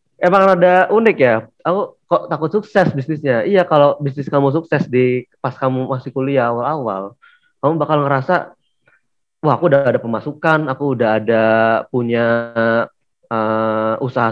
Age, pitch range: 20-39, 115-145 Hz